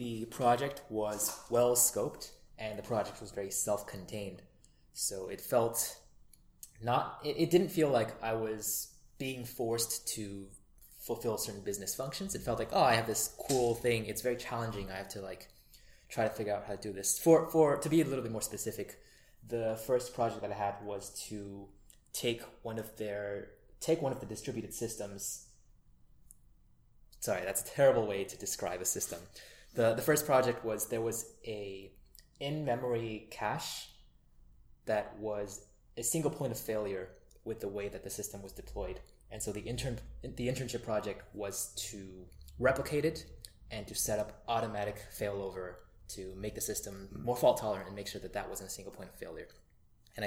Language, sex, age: English, male, 20-39